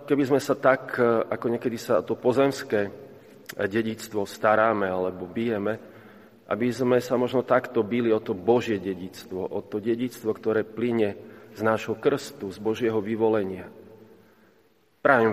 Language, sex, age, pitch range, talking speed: Slovak, male, 30-49, 105-120 Hz, 135 wpm